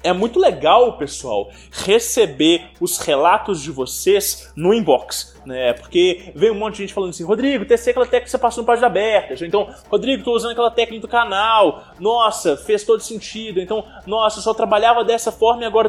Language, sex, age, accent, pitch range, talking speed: English, male, 20-39, Brazilian, 190-240 Hz, 195 wpm